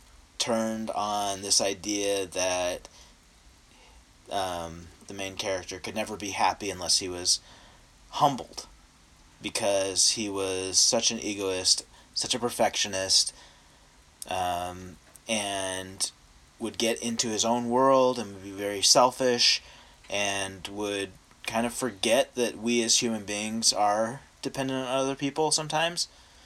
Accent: American